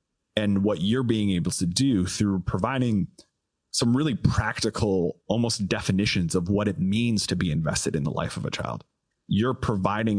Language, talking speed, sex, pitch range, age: English, 170 wpm, male, 95-110 Hz, 30-49